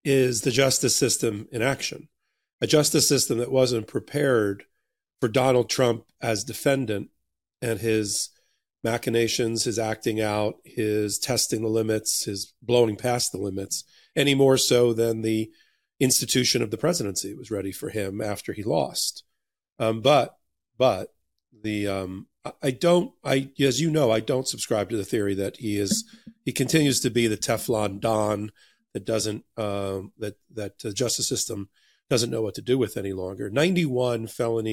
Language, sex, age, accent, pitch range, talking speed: English, male, 40-59, American, 105-130 Hz, 160 wpm